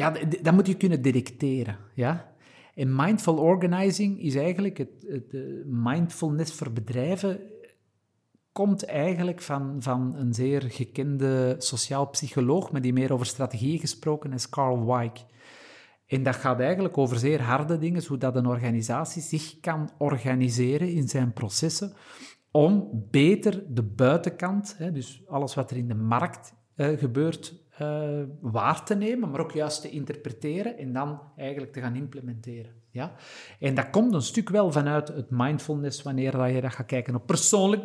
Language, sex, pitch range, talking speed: Dutch, male, 130-170 Hz, 160 wpm